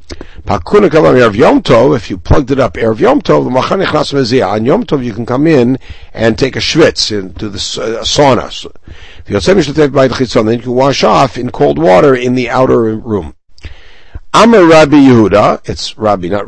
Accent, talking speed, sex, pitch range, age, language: American, 150 wpm, male, 95-140 Hz, 60-79, English